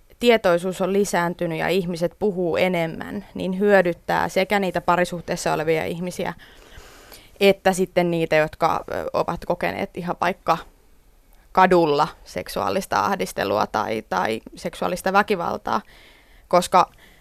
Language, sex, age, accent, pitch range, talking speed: Finnish, female, 20-39, native, 170-195 Hz, 105 wpm